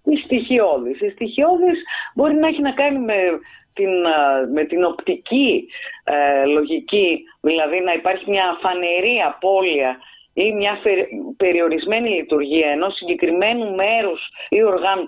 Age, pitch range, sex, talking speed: 30-49, 150-225 Hz, female, 125 wpm